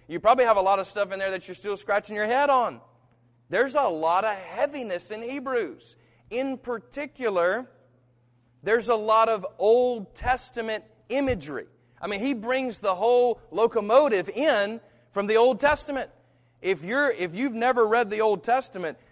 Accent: American